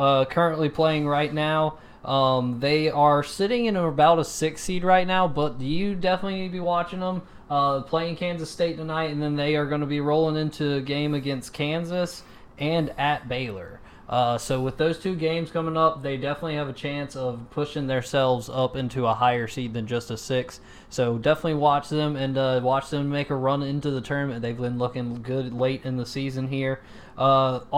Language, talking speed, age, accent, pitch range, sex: English, 205 wpm, 20-39, American, 125-150 Hz, male